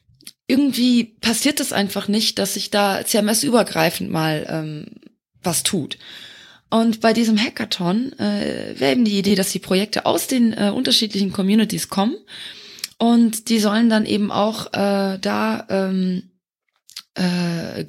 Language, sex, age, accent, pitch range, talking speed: German, female, 20-39, German, 185-225 Hz, 140 wpm